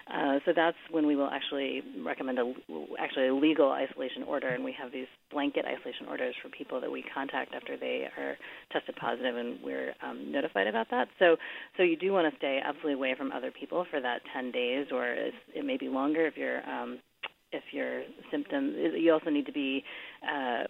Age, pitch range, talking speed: 30-49, 135-180 Hz, 210 wpm